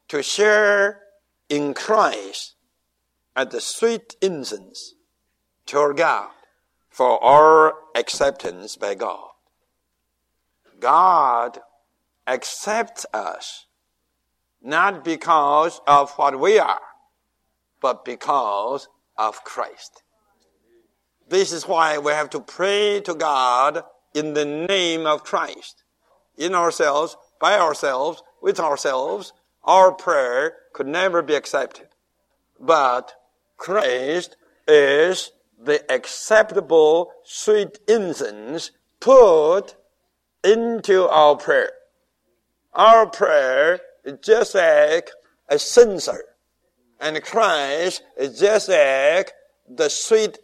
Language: English